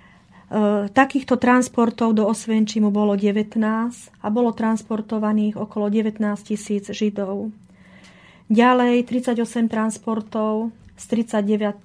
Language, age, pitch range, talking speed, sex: Slovak, 40-59, 205-230 Hz, 90 wpm, female